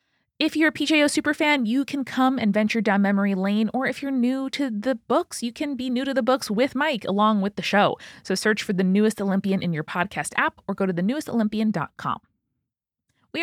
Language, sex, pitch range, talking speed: English, female, 180-230 Hz, 215 wpm